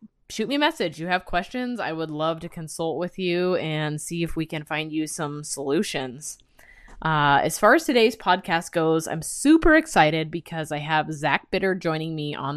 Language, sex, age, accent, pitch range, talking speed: English, female, 20-39, American, 160-210 Hz, 195 wpm